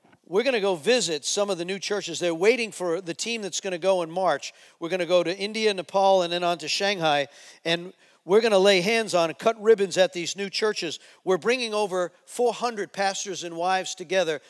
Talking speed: 230 wpm